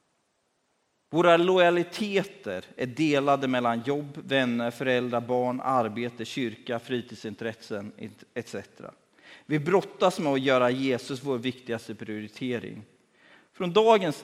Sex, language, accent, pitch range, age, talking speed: male, Swedish, native, 115-150 Hz, 40-59, 100 wpm